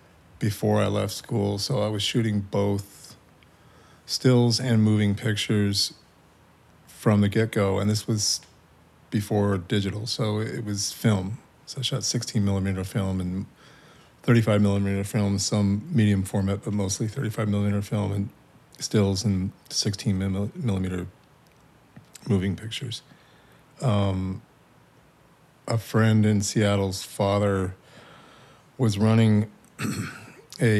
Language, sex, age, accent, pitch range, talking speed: English, male, 40-59, American, 100-115 Hz, 105 wpm